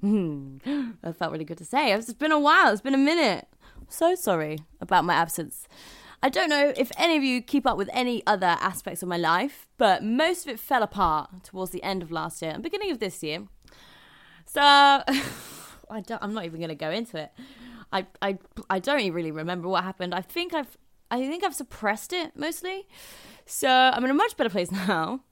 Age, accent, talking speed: 20-39, British, 210 wpm